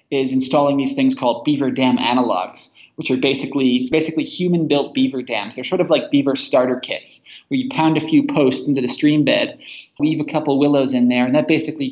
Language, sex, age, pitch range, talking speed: English, male, 20-39, 130-160 Hz, 210 wpm